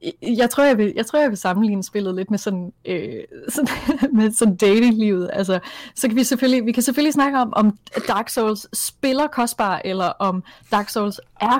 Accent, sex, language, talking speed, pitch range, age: native, female, Danish, 195 wpm, 185-220 Hz, 20-39